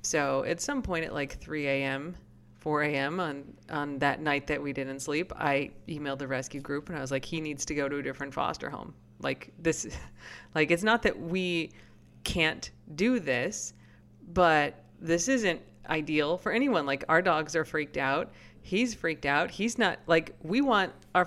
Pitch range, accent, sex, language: 140-175 Hz, American, female, English